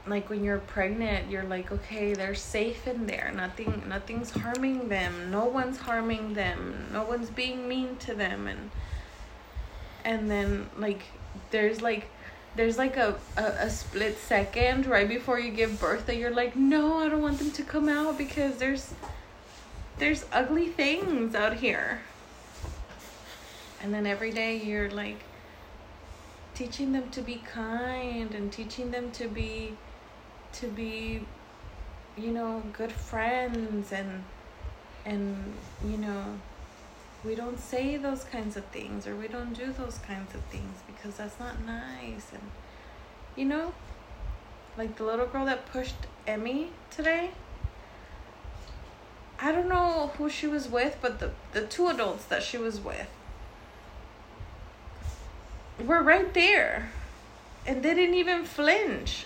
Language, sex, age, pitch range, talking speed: English, female, 20-39, 195-255 Hz, 145 wpm